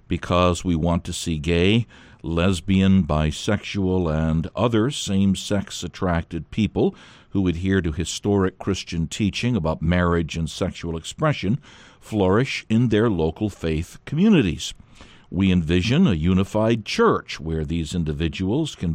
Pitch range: 85-110 Hz